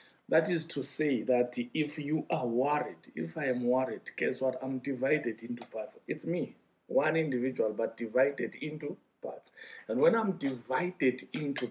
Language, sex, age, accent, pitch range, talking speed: English, male, 50-69, South African, 125-160 Hz, 165 wpm